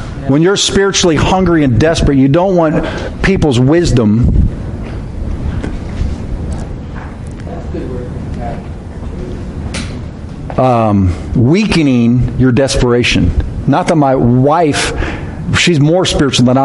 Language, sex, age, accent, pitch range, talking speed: English, male, 50-69, American, 110-155 Hz, 85 wpm